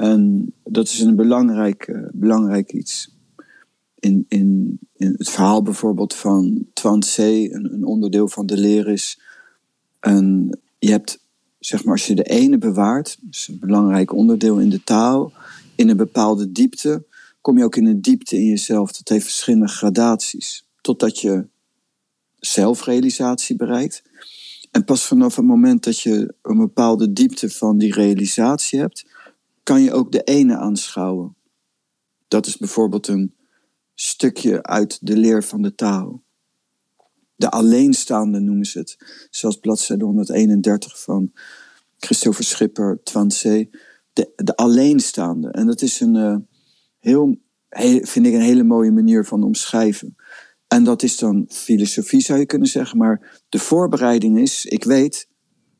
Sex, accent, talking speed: male, Dutch, 145 wpm